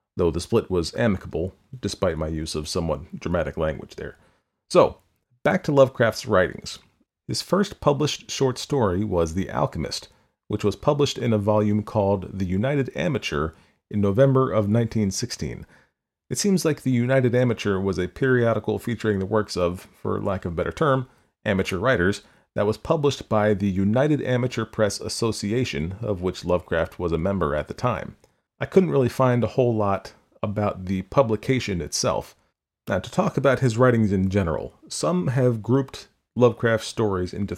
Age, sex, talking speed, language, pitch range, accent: 40-59, male, 165 wpm, English, 95-125 Hz, American